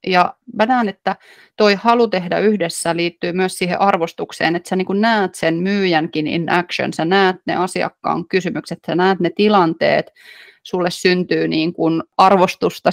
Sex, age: female, 30-49